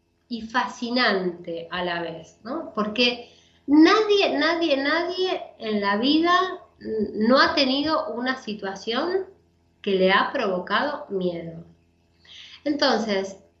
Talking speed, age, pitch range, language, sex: 105 wpm, 20-39, 185-270 Hz, Spanish, female